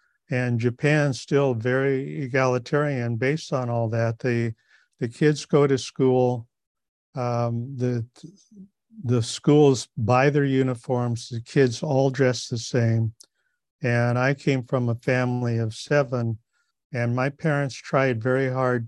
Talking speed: 135 wpm